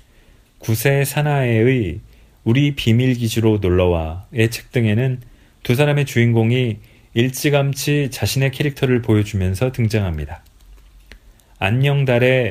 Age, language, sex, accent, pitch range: 40-59, Korean, male, native, 100-130 Hz